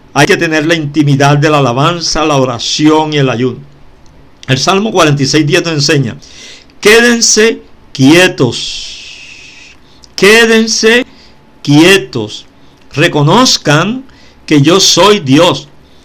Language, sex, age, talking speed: Spanish, male, 50-69, 100 wpm